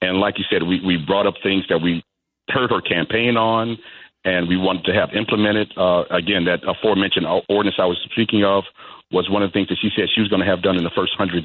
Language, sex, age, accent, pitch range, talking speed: English, male, 50-69, American, 95-110 Hz, 250 wpm